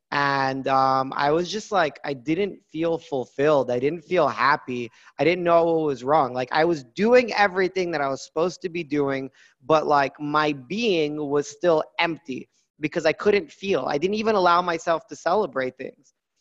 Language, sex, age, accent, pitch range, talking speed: English, male, 20-39, American, 135-170 Hz, 185 wpm